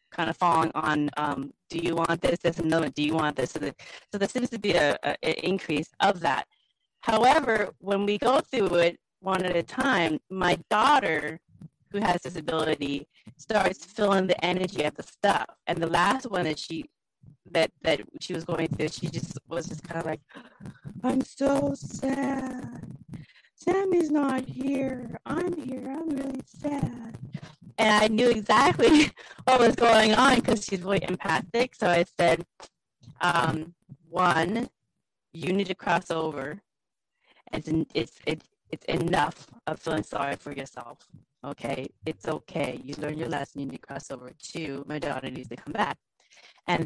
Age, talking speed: 30-49, 170 wpm